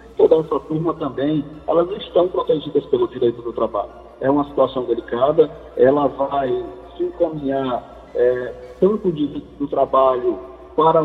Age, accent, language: 50-69, Brazilian, Portuguese